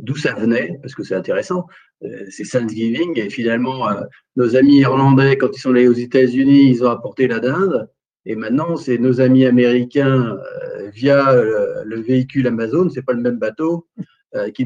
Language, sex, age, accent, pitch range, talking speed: French, male, 40-59, French, 120-160 Hz, 170 wpm